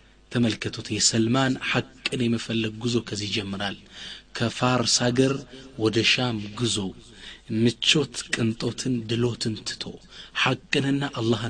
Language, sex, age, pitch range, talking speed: Amharic, male, 30-49, 115-150 Hz, 90 wpm